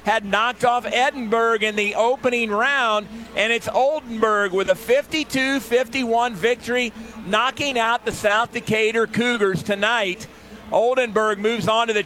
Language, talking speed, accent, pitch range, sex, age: English, 135 wpm, American, 215-245 Hz, male, 50-69